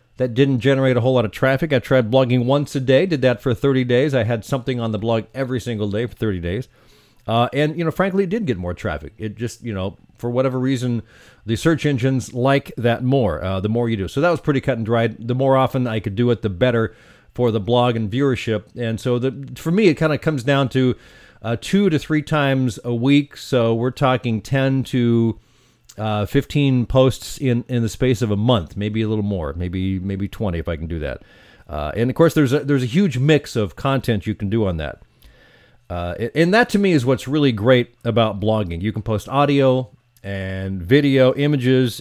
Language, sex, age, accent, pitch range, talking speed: English, male, 40-59, American, 110-140 Hz, 225 wpm